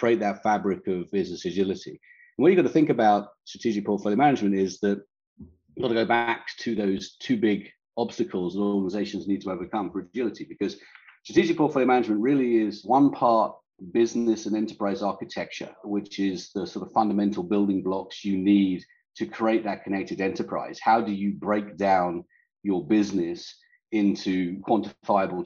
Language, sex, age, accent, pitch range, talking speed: English, male, 40-59, British, 100-120 Hz, 165 wpm